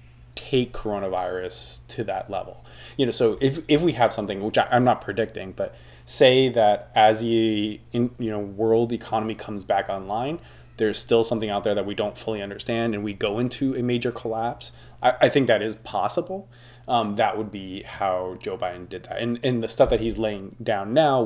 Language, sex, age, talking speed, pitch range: English, male, 20-39, 200 wpm, 100-125 Hz